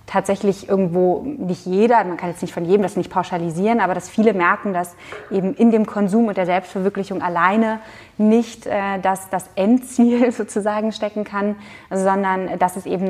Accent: German